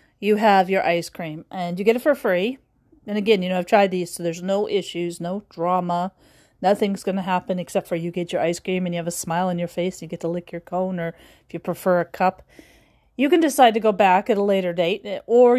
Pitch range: 180-220 Hz